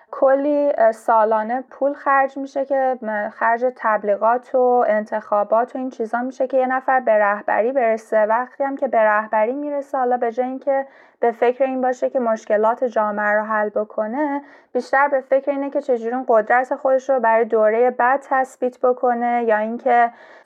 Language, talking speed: Persian, 165 wpm